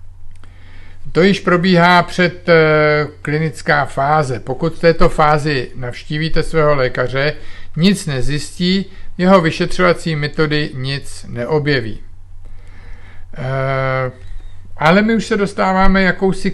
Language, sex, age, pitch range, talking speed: Czech, male, 50-69, 120-165 Hz, 95 wpm